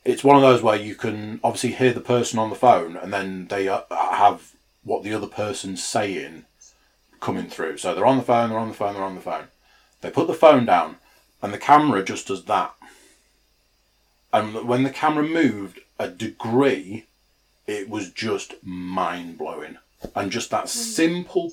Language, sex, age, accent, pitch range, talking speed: English, male, 30-49, British, 105-140 Hz, 180 wpm